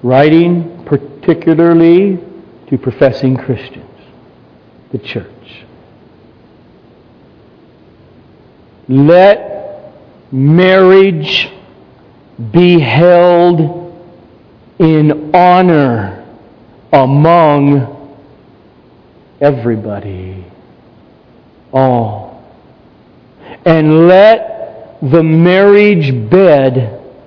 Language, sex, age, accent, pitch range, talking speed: English, male, 50-69, American, 115-165 Hz, 45 wpm